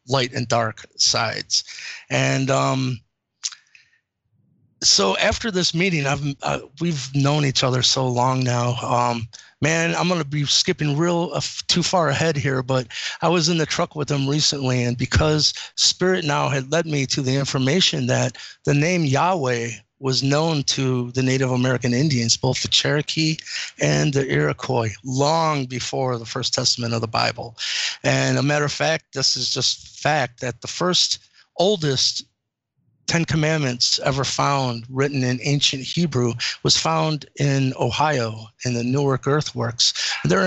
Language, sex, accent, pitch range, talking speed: English, male, American, 125-160 Hz, 155 wpm